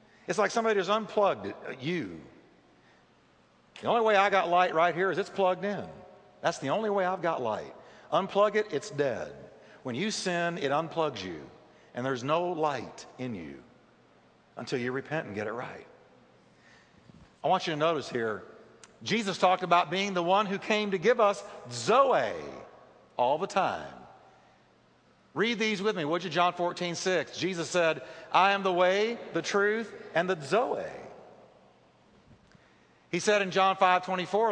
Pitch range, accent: 160-205 Hz, American